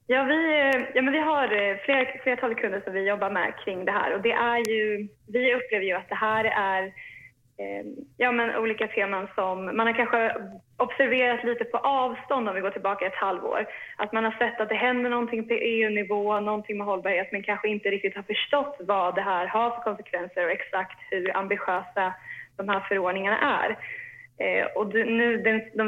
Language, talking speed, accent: Swedish, 190 wpm, native